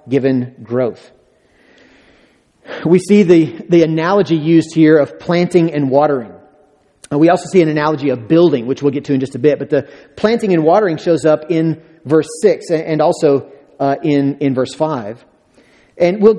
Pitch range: 145-190 Hz